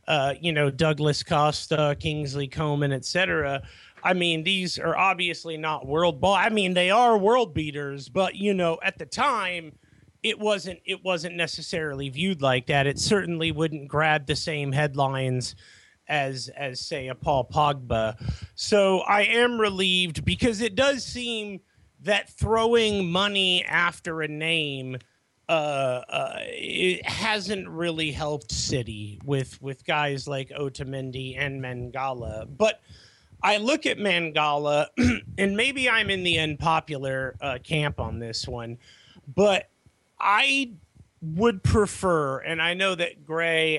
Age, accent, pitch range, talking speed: 30-49, American, 140-185 Hz, 140 wpm